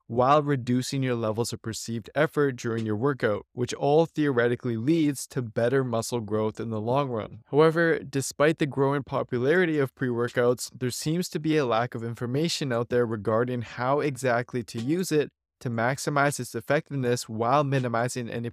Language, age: English, 20-39